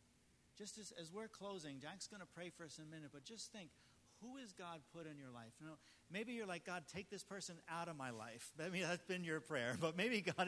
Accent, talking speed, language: American, 260 wpm, English